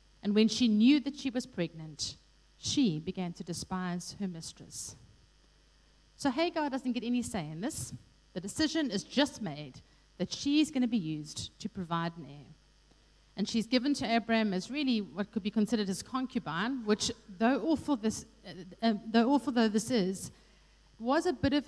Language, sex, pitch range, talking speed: English, female, 180-245 Hz, 170 wpm